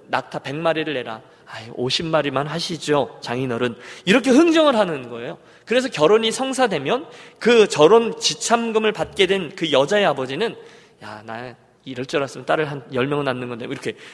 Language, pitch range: Korean, 150-240 Hz